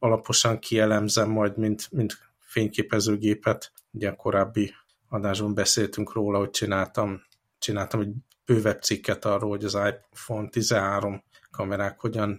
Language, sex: Hungarian, male